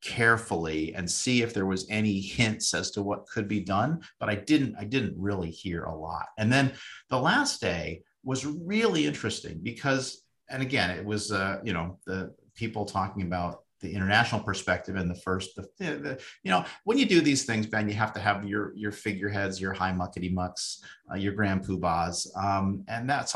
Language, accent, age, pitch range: English, American, 40-59, 90-110 Hz